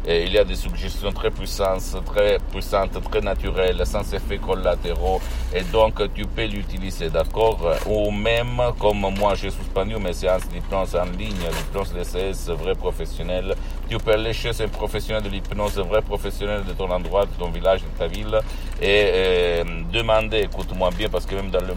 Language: Italian